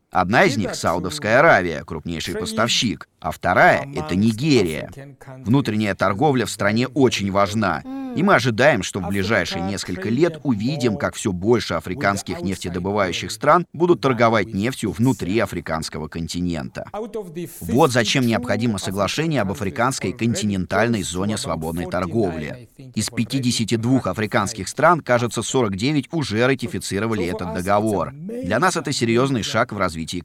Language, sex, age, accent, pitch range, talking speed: Russian, male, 30-49, native, 95-130 Hz, 130 wpm